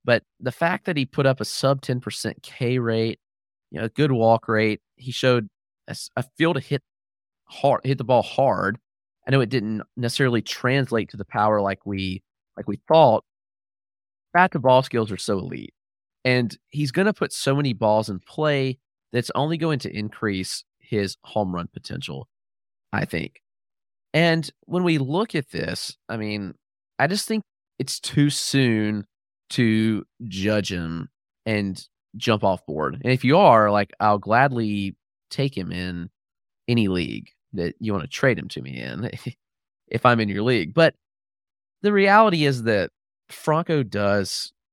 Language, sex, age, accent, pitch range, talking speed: English, male, 30-49, American, 100-140 Hz, 165 wpm